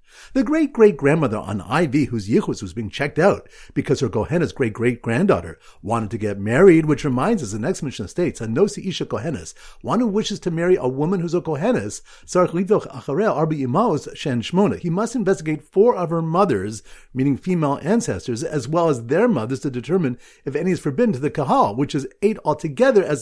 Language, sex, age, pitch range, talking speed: English, male, 50-69, 125-185 Hz, 185 wpm